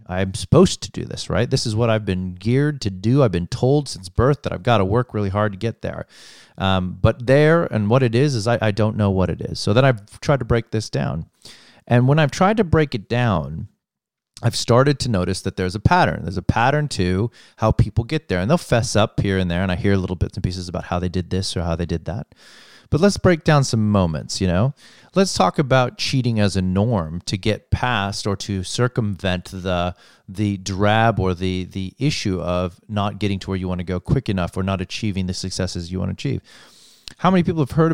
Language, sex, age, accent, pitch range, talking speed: English, male, 30-49, American, 95-125 Hz, 240 wpm